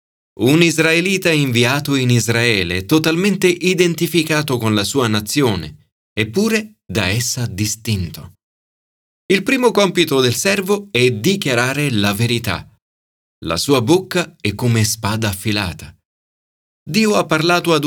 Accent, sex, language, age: native, male, Italian, 30-49